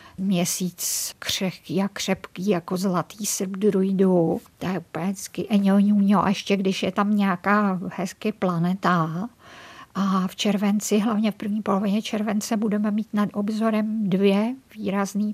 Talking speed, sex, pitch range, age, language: 140 wpm, female, 190-215 Hz, 50-69, Czech